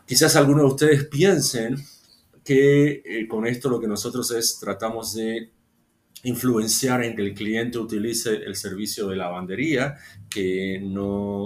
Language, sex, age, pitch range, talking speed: Spanish, male, 40-59, 100-125 Hz, 140 wpm